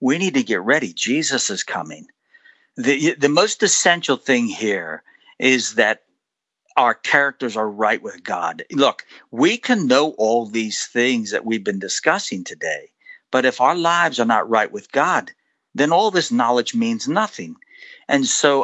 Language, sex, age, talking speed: English, male, 60-79, 165 wpm